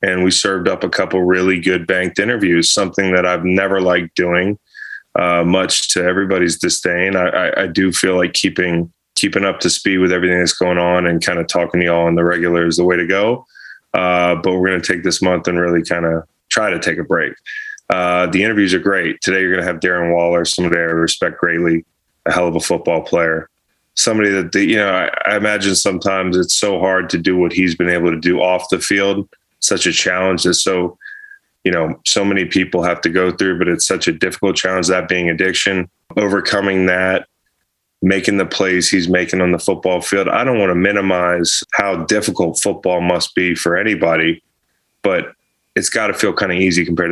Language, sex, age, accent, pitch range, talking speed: English, male, 20-39, American, 85-95 Hz, 210 wpm